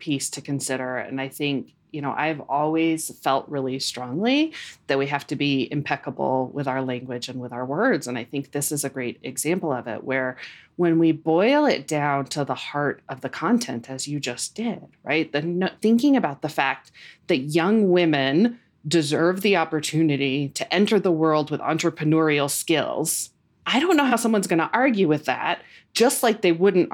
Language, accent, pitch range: English, American, 140-190 Hz